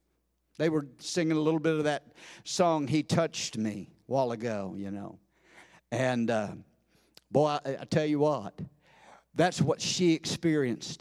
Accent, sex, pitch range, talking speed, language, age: American, male, 150-190 Hz, 160 wpm, English, 50-69